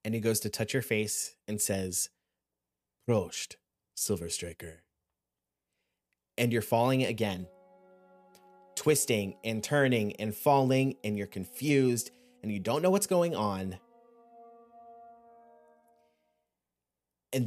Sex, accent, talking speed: male, American, 110 wpm